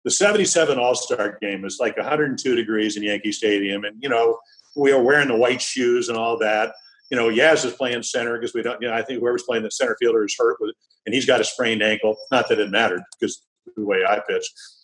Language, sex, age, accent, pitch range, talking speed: English, male, 50-69, American, 110-160 Hz, 245 wpm